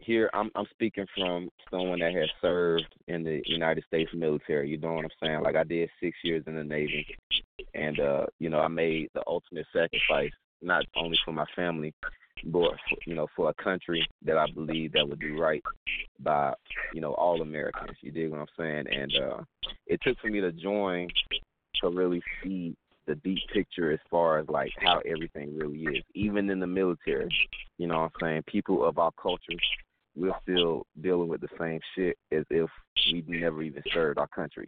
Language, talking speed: English, 195 wpm